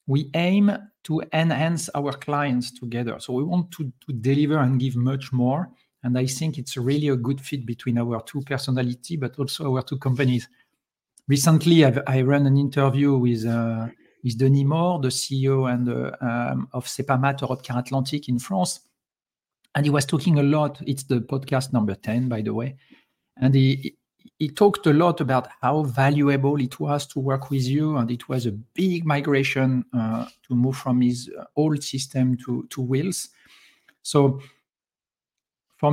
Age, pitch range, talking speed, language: 40-59, 125-145 Hz, 170 wpm, English